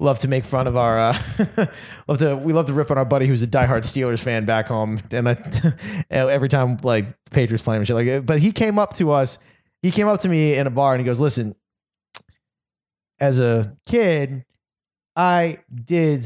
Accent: American